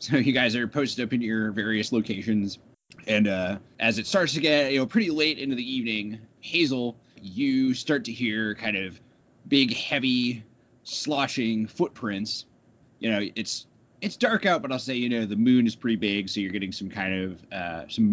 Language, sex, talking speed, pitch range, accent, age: English, male, 195 wpm, 105-125 Hz, American, 20-39